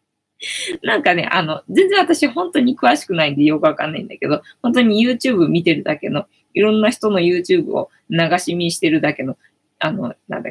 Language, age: Japanese, 20-39